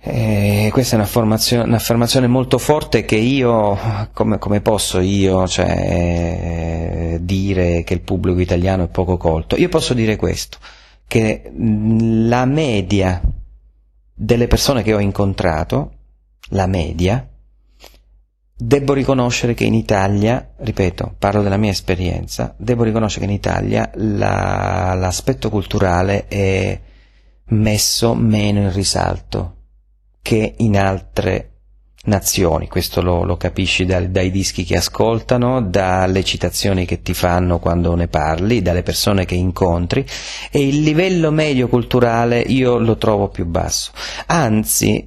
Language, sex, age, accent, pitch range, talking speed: Italian, male, 40-59, native, 90-120 Hz, 130 wpm